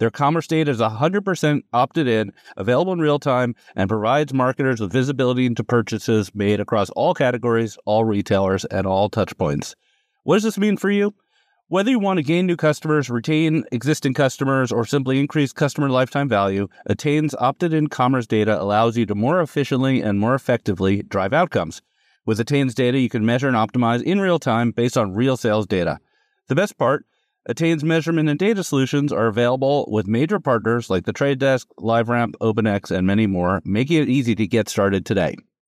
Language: English